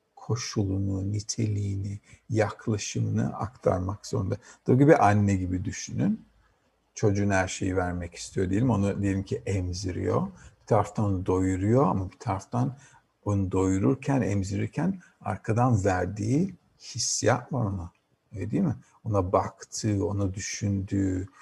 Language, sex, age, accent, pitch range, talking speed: Turkish, male, 50-69, native, 100-125 Hz, 120 wpm